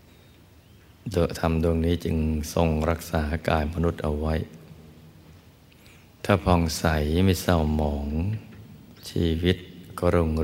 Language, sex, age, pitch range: Thai, male, 60-79, 80-90 Hz